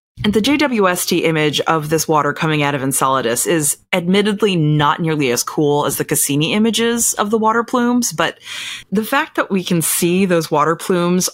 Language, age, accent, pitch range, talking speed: English, 30-49, American, 145-185 Hz, 185 wpm